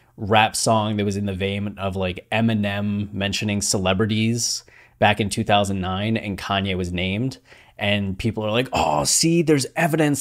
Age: 20-39